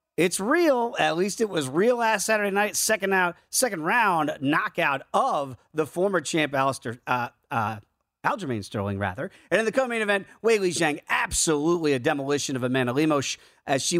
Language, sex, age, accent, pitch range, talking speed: English, male, 40-59, American, 140-205 Hz, 180 wpm